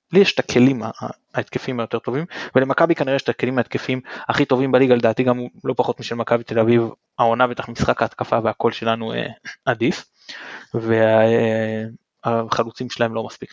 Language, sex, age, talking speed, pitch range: Hebrew, male, 20-39, 175 wpm, 115-170 Hz